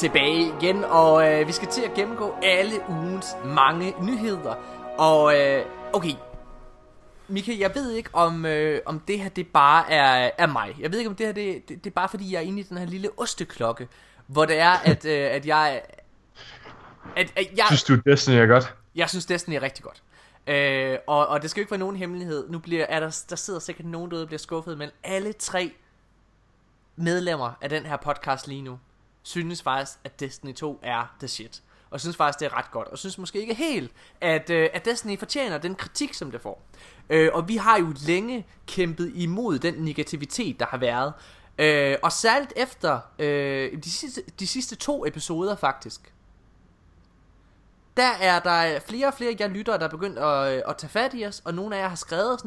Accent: native